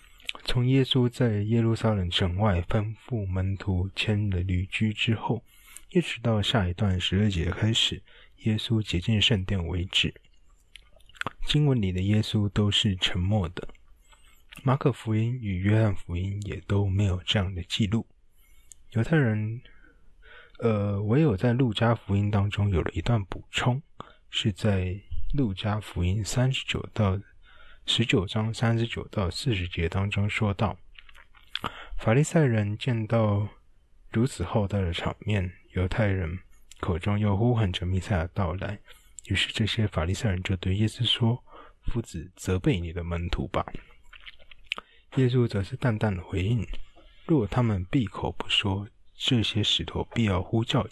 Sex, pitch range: male, 95-115 Hz